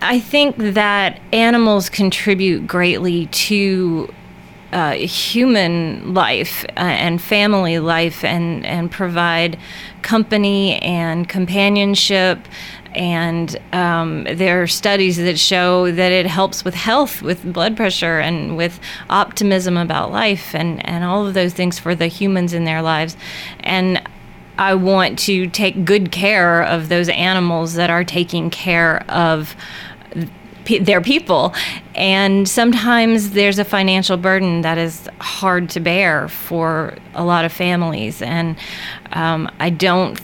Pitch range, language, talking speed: 165-195 Hz, English, 135 wpm